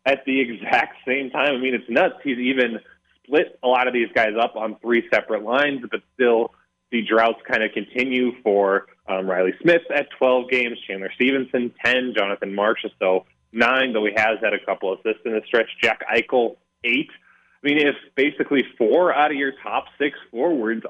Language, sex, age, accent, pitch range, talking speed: English, male, 20-39, American, 105-125 Hz, 190 wpm